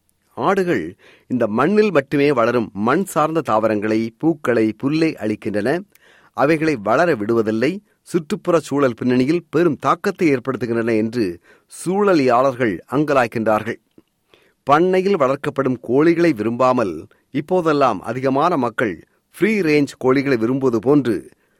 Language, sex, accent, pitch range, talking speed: Tamil, male, native, 115-155 Hz, 95 wpm